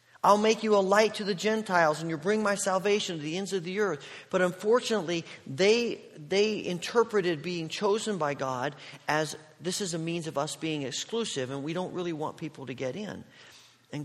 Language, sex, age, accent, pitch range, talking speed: English, male, 50-69, American, 130-195 Hz, 200 wpm